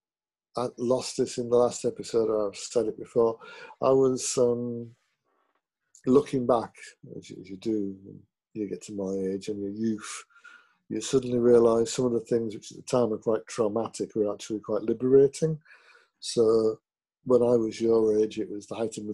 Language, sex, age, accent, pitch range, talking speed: English, male, 50-69, British, 105-130 Hz, 190 wpm